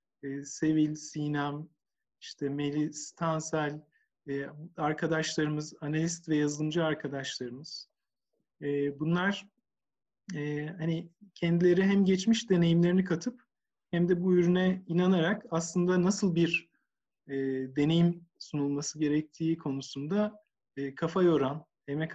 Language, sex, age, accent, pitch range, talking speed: Turkish, male, 50-69, native, 150-185 Hz, 85 wpm